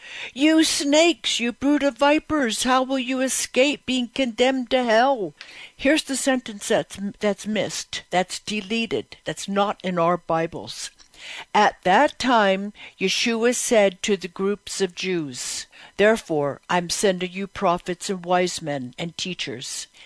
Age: 60-79